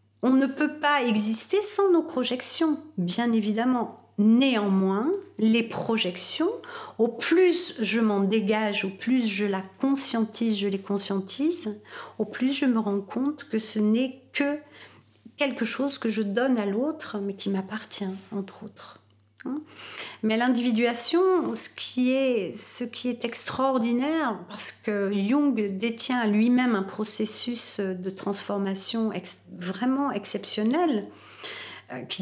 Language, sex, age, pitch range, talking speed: French, female, 50-69, 210-265 Hz, 125 wpm